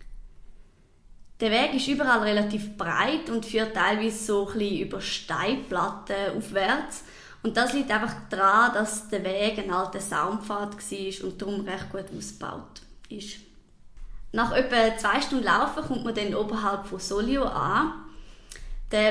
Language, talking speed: German, 140 wpm